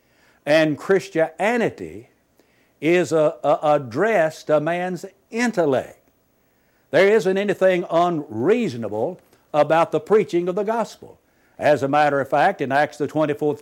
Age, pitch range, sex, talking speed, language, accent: 60-79, 150-195 Hz, male, 125 wpm, English, American